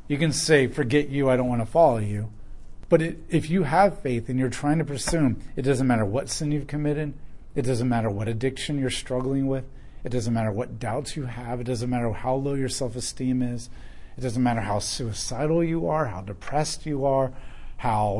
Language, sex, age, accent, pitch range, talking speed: English, male, 40-59, American, 110-145 Hz, 210 wpm